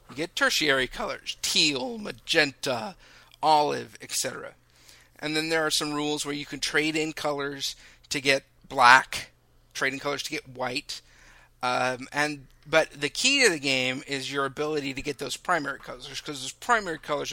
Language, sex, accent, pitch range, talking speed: English, male, American, 130-155 Hz, 165 wpm